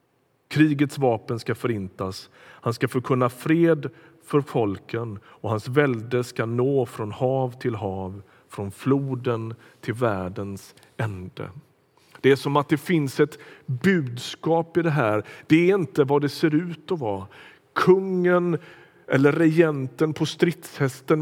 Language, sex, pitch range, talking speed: Swedish, male, 120-150 Hz, 140 wpm